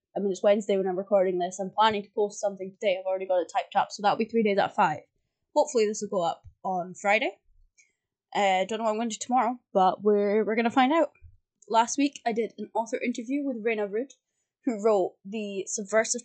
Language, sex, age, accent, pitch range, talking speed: English, female, 20-39, British, 205-250 Hz, 240 wpm